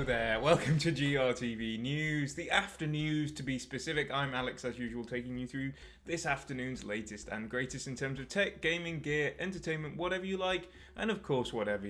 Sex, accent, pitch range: male, British, 115-155 Hz